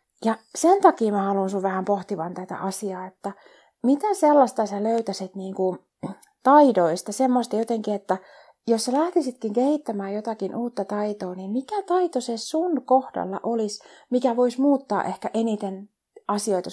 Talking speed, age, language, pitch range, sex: 145 wpm, 30-49, Finnish, 195-245 Hz, female